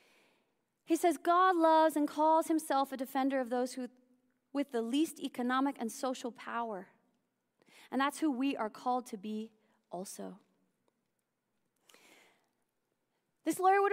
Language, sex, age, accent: English, female, 30-49, American